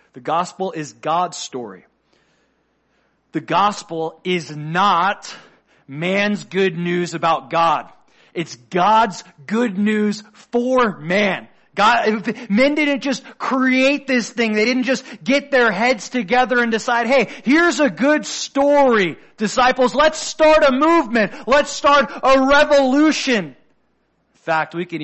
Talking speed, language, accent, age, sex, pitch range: 130 wpm, English, American, 30-49, male, 160-245 Hz